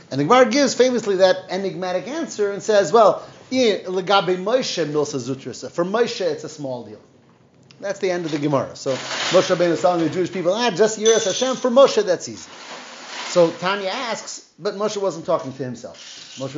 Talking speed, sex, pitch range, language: 175 wpm, male, 150-205 Hz, English